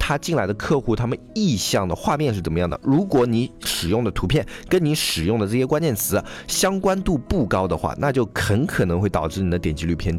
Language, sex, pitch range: Chinese, male, 95-130 Hz